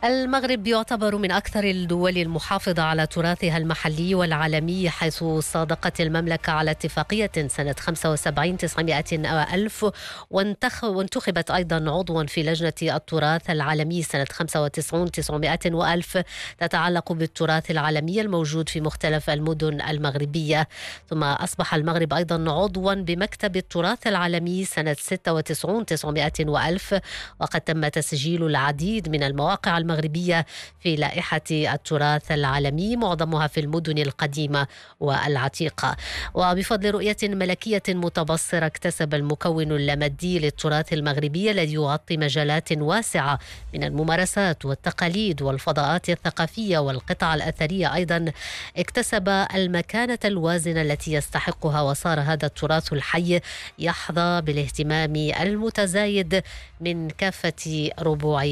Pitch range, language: 155-180 Hz, English